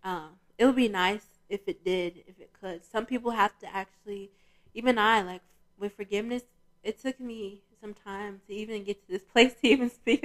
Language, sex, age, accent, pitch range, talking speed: English, female, 20-39, American, 185-225 Hz, 210 wpm